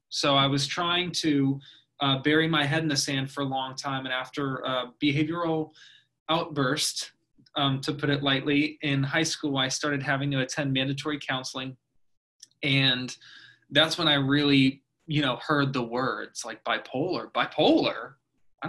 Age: 20-39